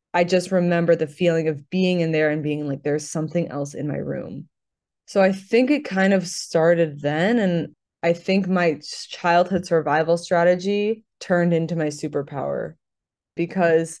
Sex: female